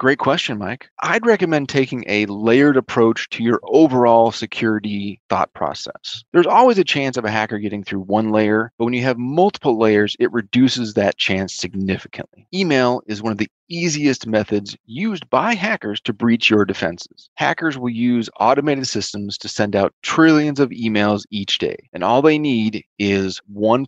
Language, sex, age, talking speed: English, male, 30-49, 175 wpm